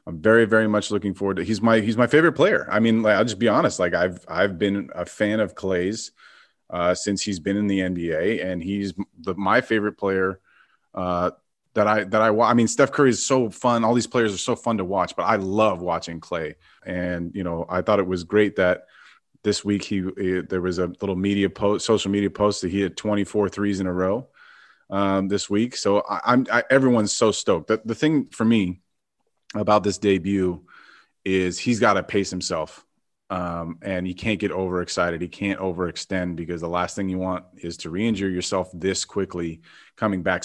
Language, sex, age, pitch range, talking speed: English, male, 30-49, 90-110 Hz, 215 wpm